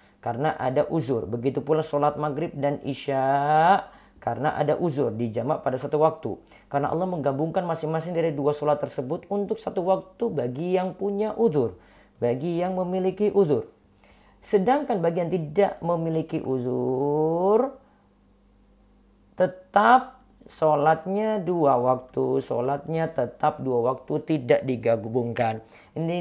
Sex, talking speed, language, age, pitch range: female, 120 wpm, Indonesian, 40-59, 120-165 Hz